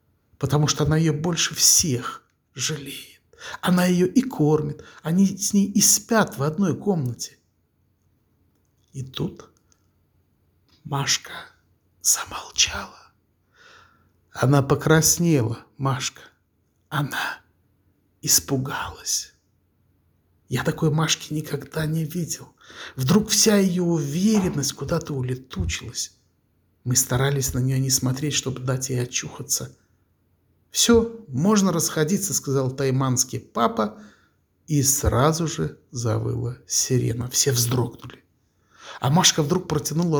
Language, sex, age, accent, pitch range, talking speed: Russian, male, 60-79, native, 120-160 Hz, 100 wpm